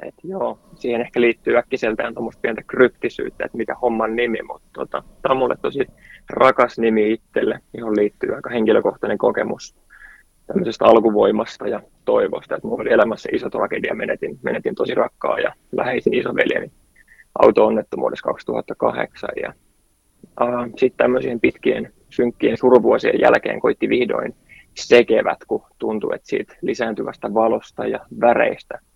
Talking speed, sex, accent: 135 wpm, male, native